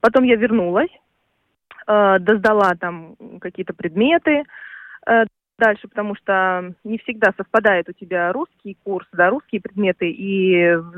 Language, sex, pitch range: Russian, female, 185-230 Hz